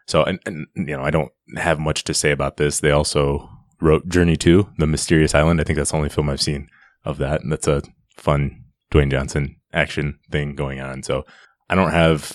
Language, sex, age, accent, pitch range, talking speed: English, male, 20-39, American, 70-75 Hz, 220 wpm